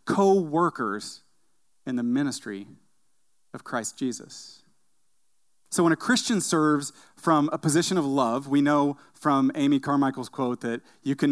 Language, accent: English, American